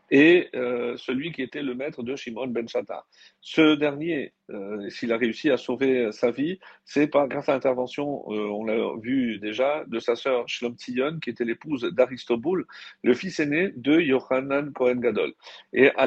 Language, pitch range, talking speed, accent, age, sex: French, 125-160 Hz, 175 wpm, French, 50-69, male